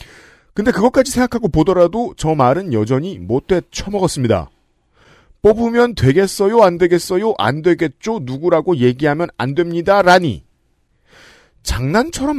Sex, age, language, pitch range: male, 40-59, Korean, 130-195 Hz